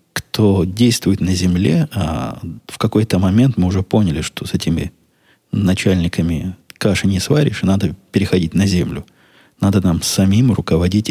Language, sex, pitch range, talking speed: Russian, male, 90-105 Hz, 145 wpm